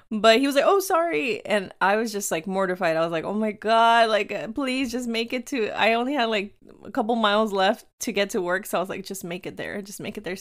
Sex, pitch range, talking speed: female, 185-240 Hz, 275 wpm